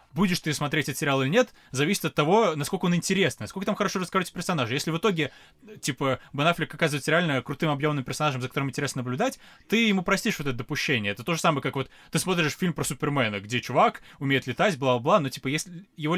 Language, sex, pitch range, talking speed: Russian, male, 130-165 Hz, 215 wpm